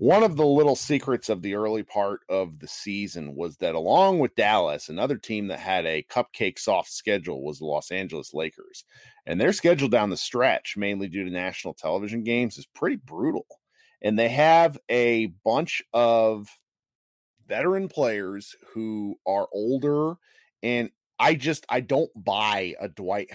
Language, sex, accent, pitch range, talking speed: English, male, American, 100-140 Hz, 165 wpm